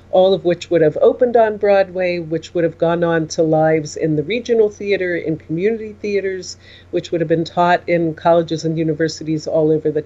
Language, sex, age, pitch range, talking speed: English, female, 40-59, 160-205 Hz, 205 wpm